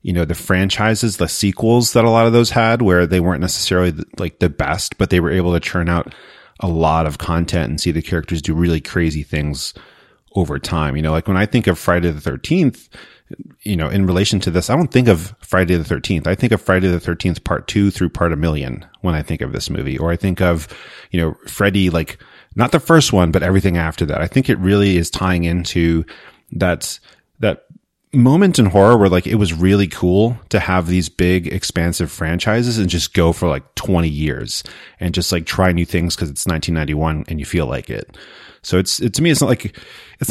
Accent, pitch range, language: American, 85-100 Hz, English